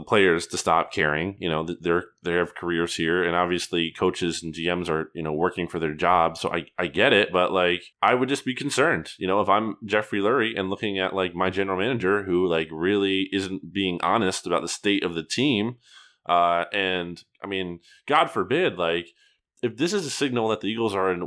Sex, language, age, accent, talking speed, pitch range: male, English, 20-39, American, 215 wpm, 90-130 Hz